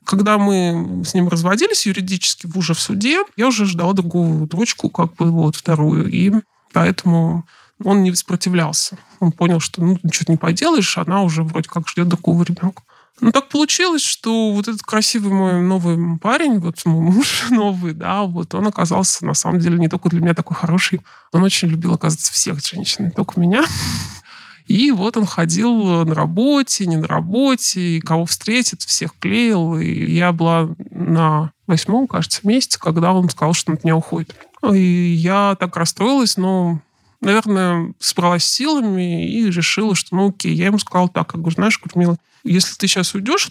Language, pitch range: Russian, 170-205 Hz